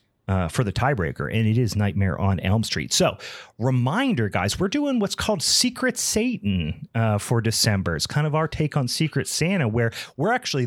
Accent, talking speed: American, 190 wpm